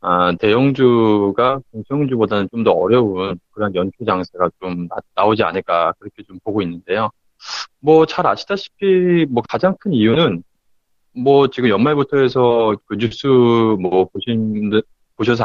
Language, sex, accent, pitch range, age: Korean, male, native, 100-140 Hz, 20-39